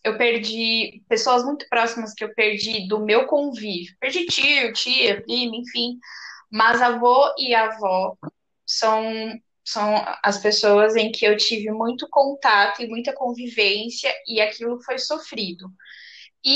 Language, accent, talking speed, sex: Portuguese, Brazilian, 135 wpm, female